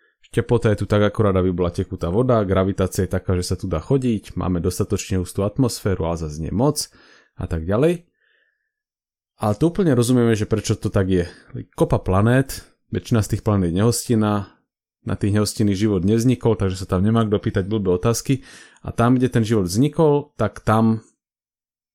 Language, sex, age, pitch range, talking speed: Slovak, male, 30-49, 95-120 Hz, 170 wpm